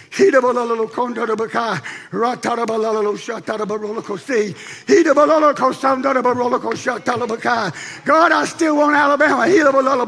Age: 50-69